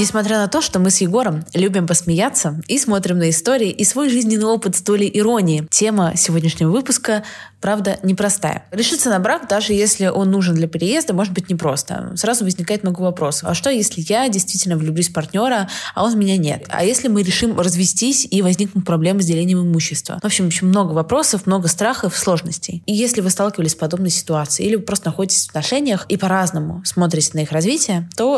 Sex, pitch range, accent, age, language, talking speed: female, 165-210 Hz, native, 20-39, Russian, 190 wpm